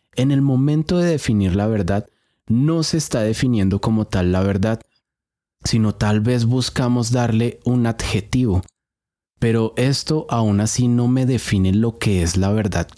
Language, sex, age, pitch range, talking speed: Spanish, male, 30-49, 105-130 Hz, 155 wpm